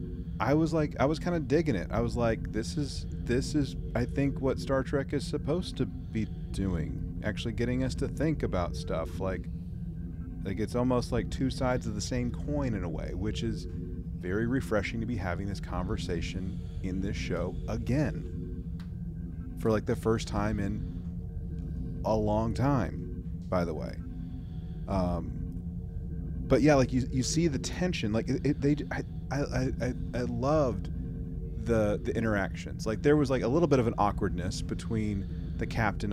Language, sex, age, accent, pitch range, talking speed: English, male, 30-49, American, 85-125 Hz, 175 wpm